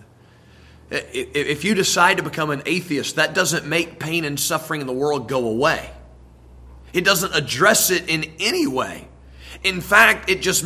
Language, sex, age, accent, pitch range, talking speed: English, male, 30-49, American, 145-185 Hz, 165 wpm